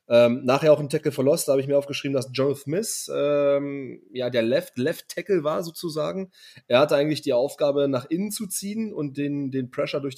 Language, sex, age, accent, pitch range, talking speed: German, male, 30-49, German, 120-150 Hz, 205 wpm